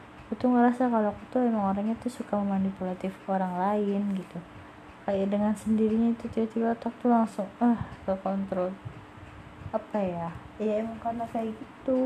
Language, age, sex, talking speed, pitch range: Indonesian, 20-39, female, 165 wpm, 190-220 Hz